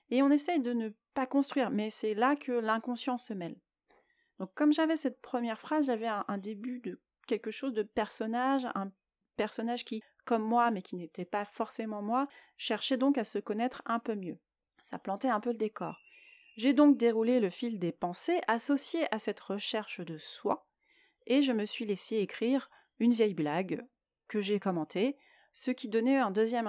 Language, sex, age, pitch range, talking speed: French, female, 30-49, 200-260 Hz, 190 wpm